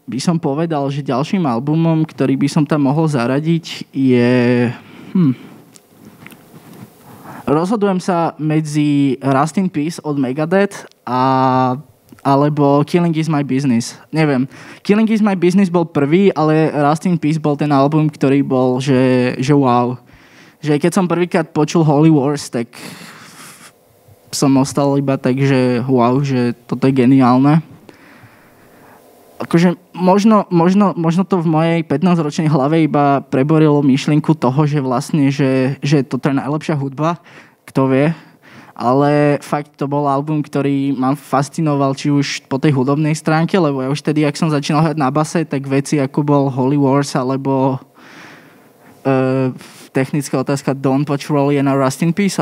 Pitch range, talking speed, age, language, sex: 135-155 Hz, 145 wpm, 20-39, Slovak, male